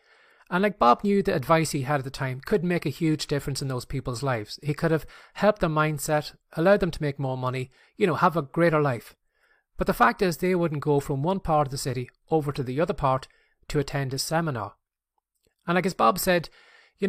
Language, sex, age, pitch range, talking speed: English, male, 30-49, 140-180 Hz, 230 wpm